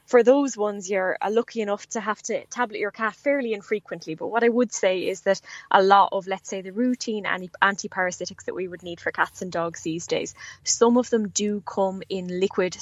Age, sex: 10-29, female